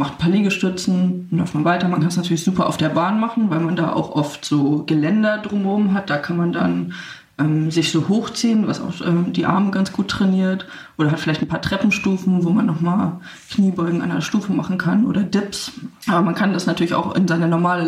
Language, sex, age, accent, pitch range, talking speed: German, female, 20-39, German, 165-195 Hz, 230 wpm